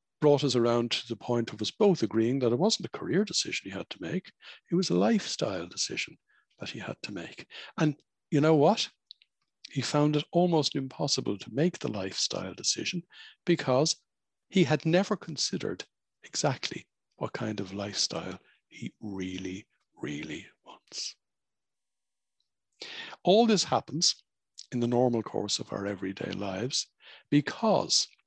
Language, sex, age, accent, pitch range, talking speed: English, male, 60-79, Irish, 105-150 Hz, 150 wpm